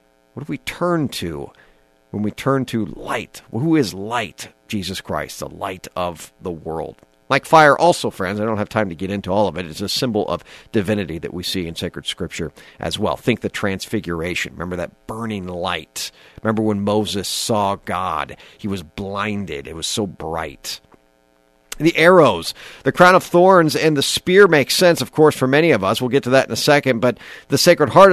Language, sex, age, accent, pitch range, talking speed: English, male, 50-69, American, 95-155 Hz, 200 wpm